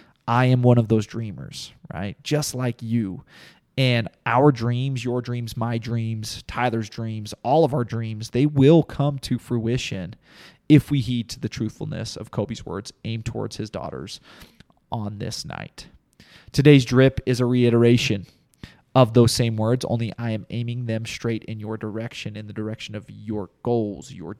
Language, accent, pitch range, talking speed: English, American, 110-125 Hz, 170 wpm